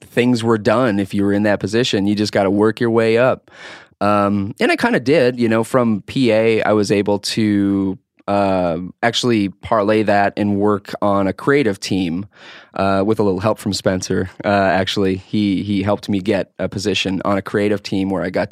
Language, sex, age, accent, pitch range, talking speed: English, male, 20-39, American, 100-120 Hz, 205 wpm